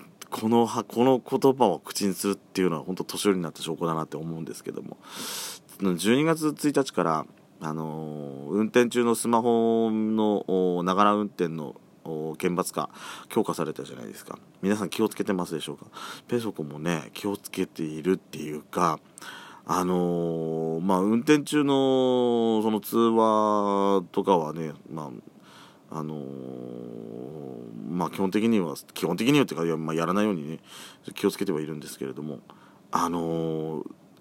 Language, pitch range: Japanese, 85-125 Hz